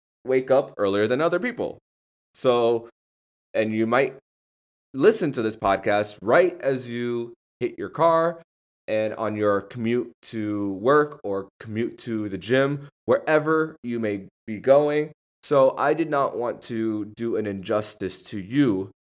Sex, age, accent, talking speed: male, 20-39, American, 150 wpm